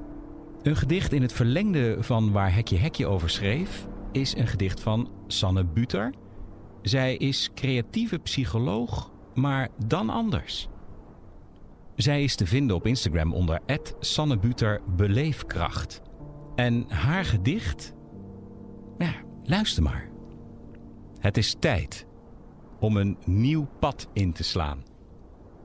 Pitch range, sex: 95-135 Hz, male